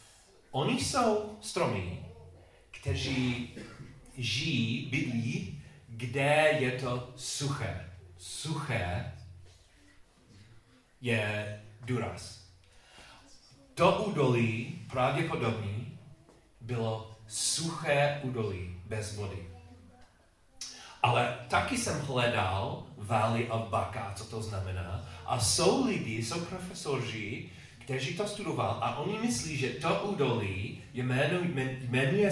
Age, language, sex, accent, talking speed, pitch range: 40-59, Czech, male, native, 90 wpm, 100-140 Hz